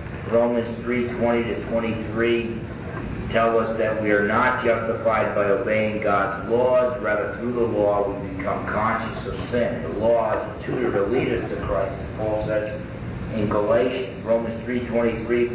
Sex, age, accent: male, 40-59, American